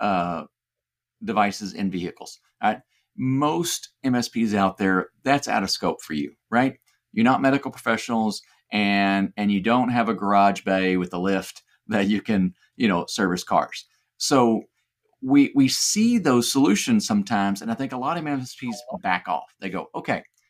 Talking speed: 165 wpm